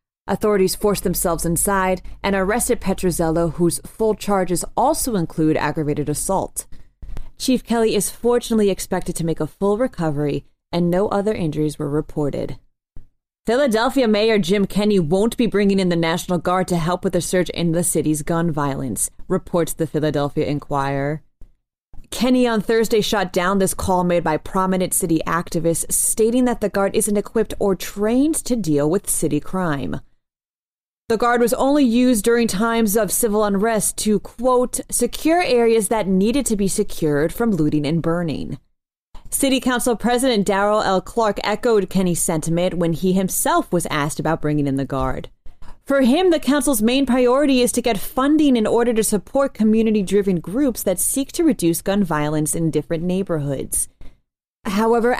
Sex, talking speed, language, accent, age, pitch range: female, 160 wpm, English, American, 30-49, 165-225 Hz